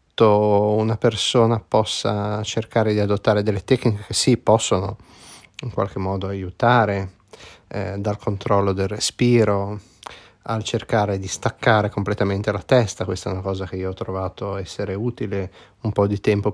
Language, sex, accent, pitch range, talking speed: Italian, male, native, 100-120 Hz, 150 wpm